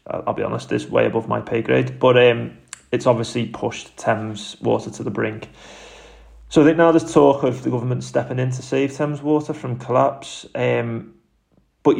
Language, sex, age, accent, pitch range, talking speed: English, male, 30-49, British, 105-125 Hz, 190 wpm